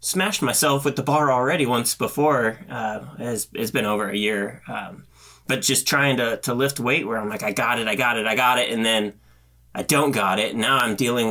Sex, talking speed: male, 240 wpm